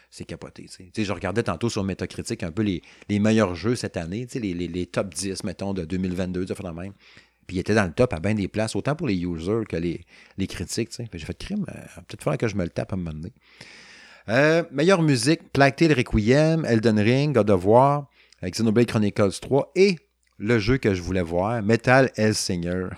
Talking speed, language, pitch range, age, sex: 220 wpm, French, 95-125 Hz, 30-49, male